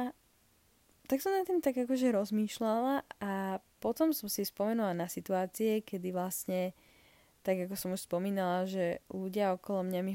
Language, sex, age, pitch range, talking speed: Slovak, female, 10-29, 190-235 Hz, 155 wpm